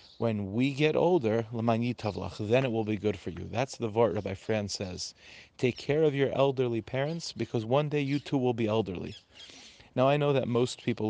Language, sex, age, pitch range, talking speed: English, male, 30-49, 105-135 Hz, 200 wpm